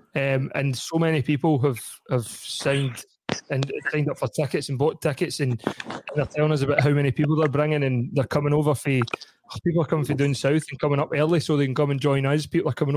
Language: English